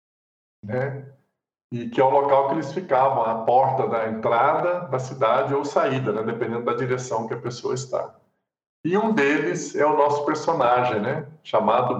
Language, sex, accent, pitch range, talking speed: Portuguese, male, Brazilian, 110-145 Hz, 170 wpm